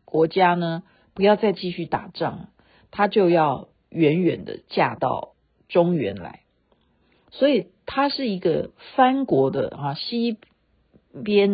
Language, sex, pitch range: Chinese, female, 170-250 Hz